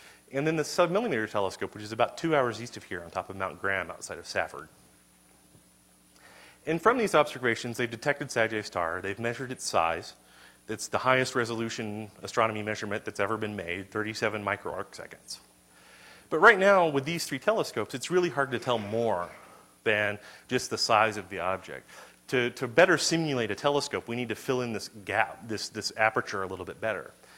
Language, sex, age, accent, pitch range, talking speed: English, male, 30-49, American, 100-130 Hz, 185 wpm